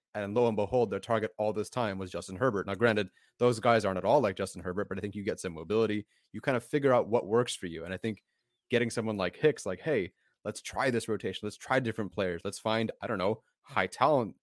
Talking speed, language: 260 wpm, English